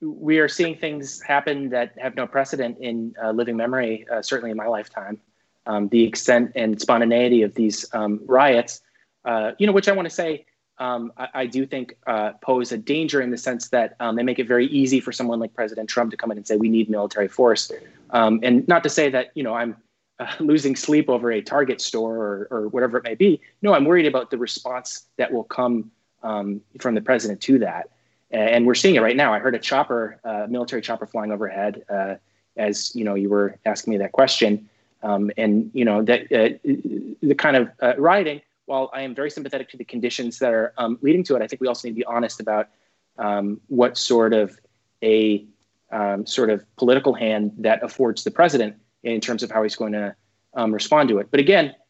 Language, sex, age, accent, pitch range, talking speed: English, male, 20-39, American, 110-135 Hz, 220 wpm